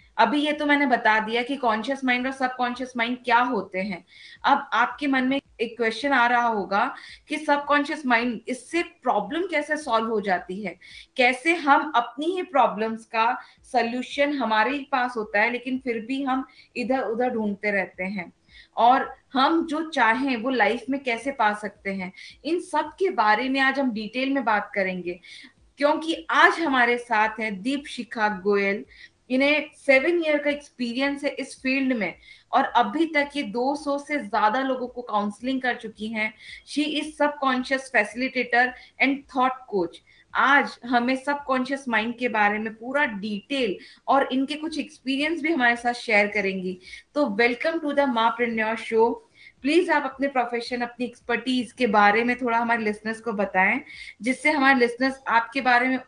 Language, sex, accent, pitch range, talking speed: Hindi, female, native, 225-275 Hz, 170 wpm